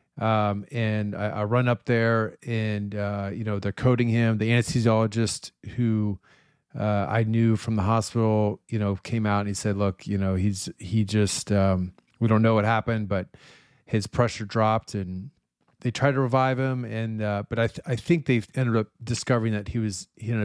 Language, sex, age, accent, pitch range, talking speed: English, male, 30-49, American, 105-120 Hz, 195 wpm